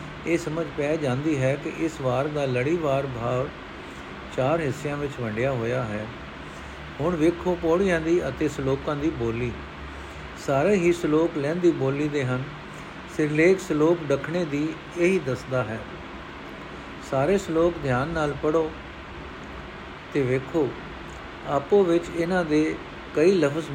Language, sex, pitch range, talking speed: Punjabi, male, 130-165 Hz, 135 wpm